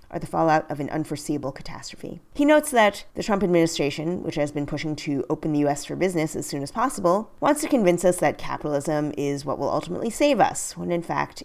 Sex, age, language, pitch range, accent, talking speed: female, 30-49, English, 150-190 Hz, American, 220 wpm